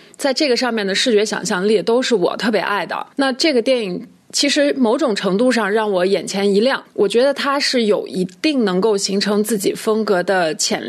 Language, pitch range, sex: Chinese, 205-255 Hz, female